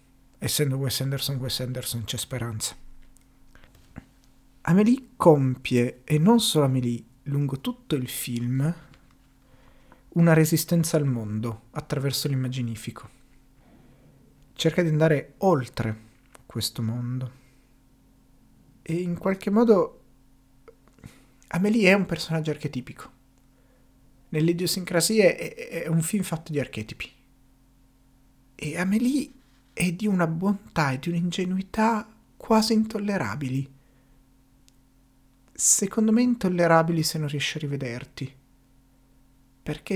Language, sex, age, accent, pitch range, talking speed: Italian, male, 40-59, native, 130-170 Hz, 100 wpm